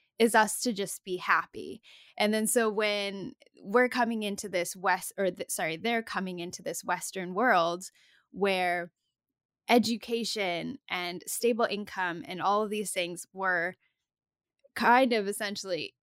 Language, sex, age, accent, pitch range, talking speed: English, female, 10-29, American, 185-230 Hz, 140 wpm